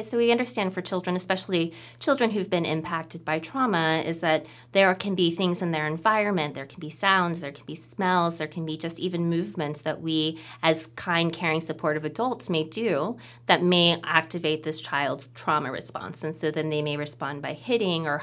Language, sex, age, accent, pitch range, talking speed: English, female, 20-39, American, 150-175 Hz, 200 wpm